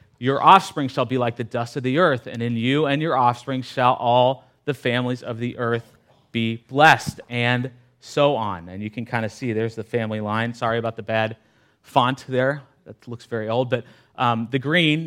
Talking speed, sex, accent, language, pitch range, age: 205 wpm, male, American, English, 115-145 Hz, 30-49